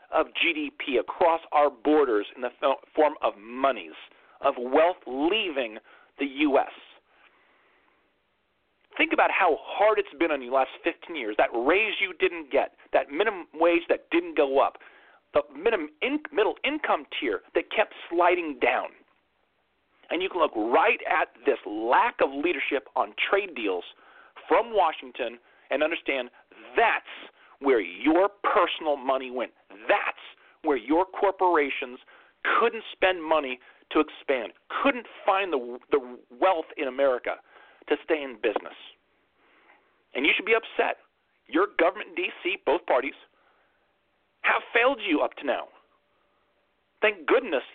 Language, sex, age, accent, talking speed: English, male, 40-59, American, 135 wpm